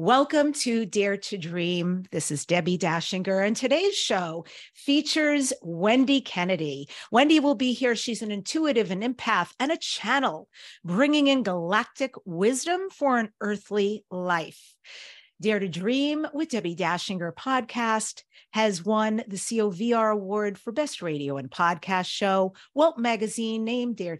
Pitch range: 185-245 Hz